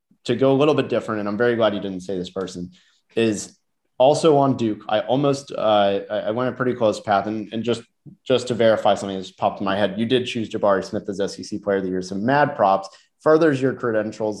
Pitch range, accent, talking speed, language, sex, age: 110-140 Hz, American, 240 wpm, English, male, 30-49